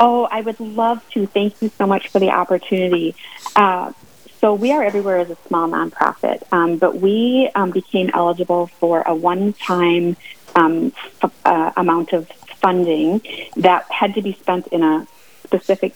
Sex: female